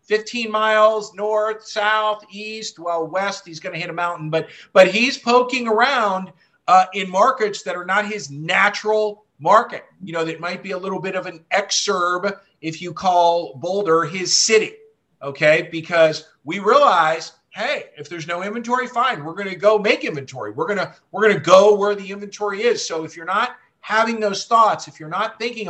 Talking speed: 190 wpm